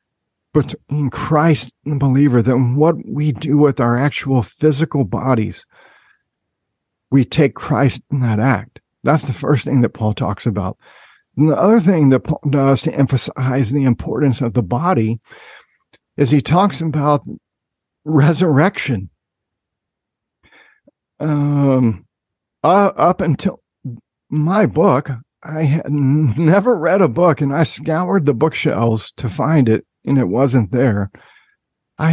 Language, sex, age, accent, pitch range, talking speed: English, male, 50-69, American, 125-155 Hz, 135 wpm